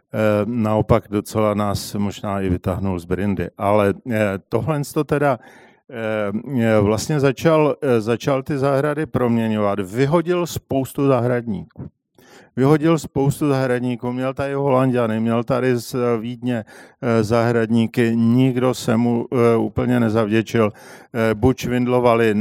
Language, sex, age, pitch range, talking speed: Czech, male, 50-69, 110-130 Hz, 105 wpm